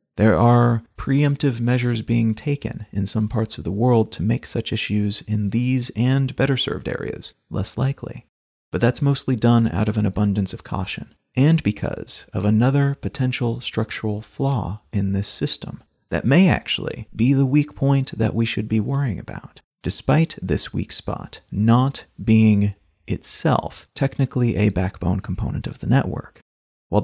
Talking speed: 160 wpm